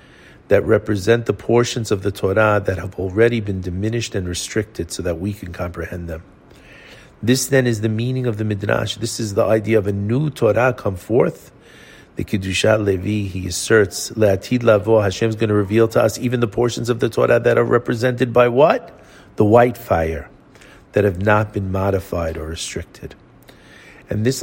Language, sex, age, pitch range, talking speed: English, male, 50-69, 100-125 Hz, 180 wpm